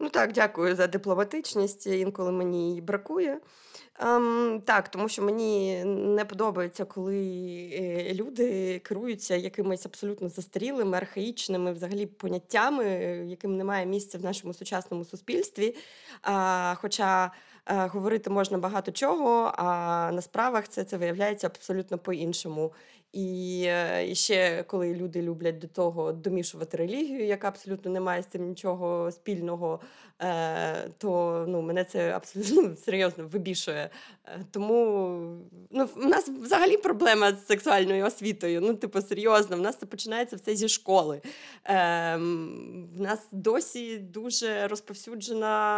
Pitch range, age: 180-215 Hz, 20-39